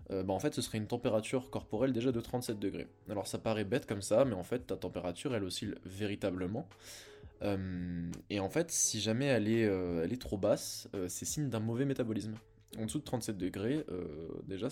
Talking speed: 210 wpm